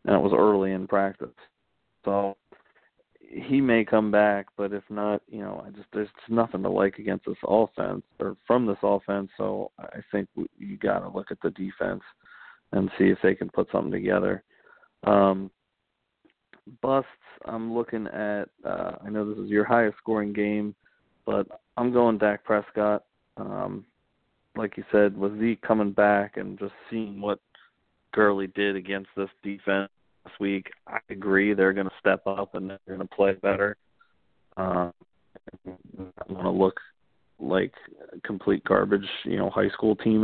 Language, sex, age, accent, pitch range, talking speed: English, male, 40-59, American, 95-110 Hz, 170 wpm